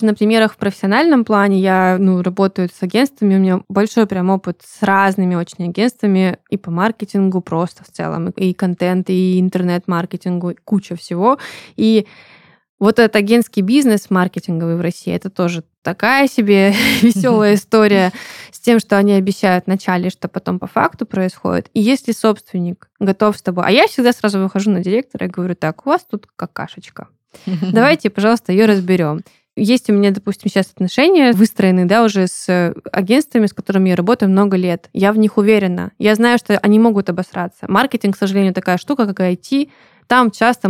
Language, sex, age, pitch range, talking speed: Russian, female, 20-39, 180-215 Hz, 170 wpm